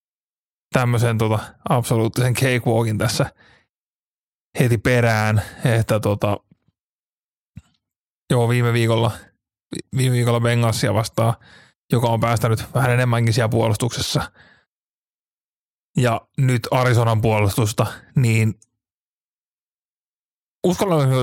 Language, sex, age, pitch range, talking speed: Finnish, male, 20-39, 115-130 Hz, 80 wpm